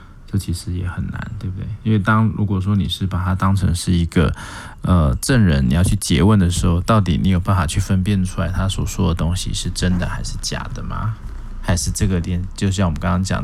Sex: male